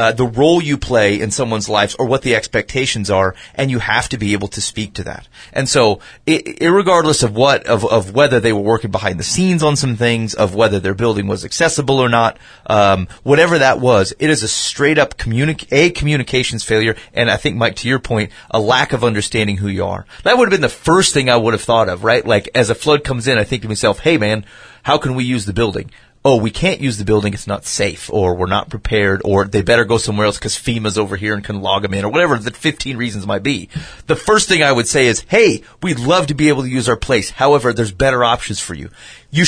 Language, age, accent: English, 30-49, American